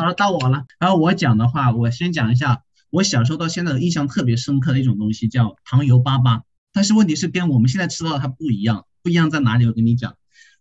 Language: Chinese